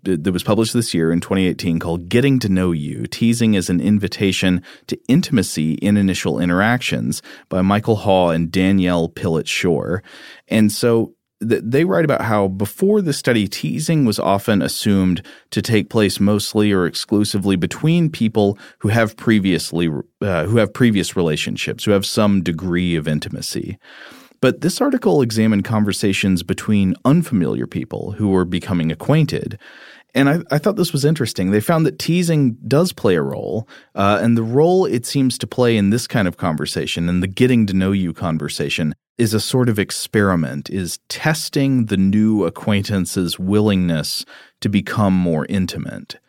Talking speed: 160 wpm